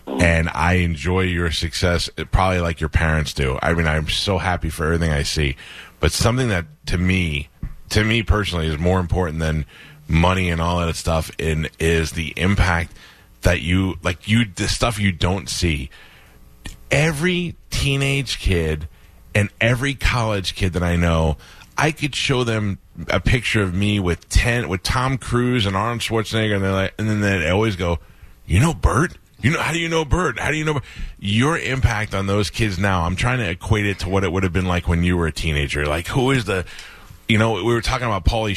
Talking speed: 205 wpm